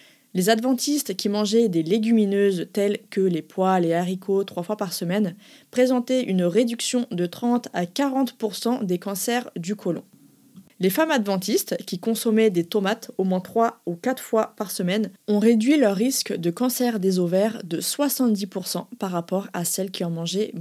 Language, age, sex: French, 20-39, female